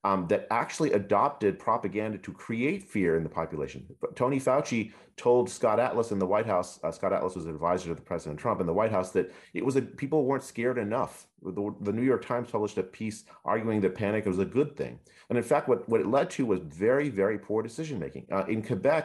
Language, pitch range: English, 95-130 Hz